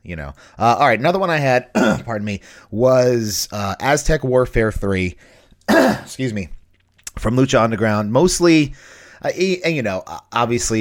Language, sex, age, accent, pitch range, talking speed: English, male, 30-49, American, 95-125 Hz, 155 wpm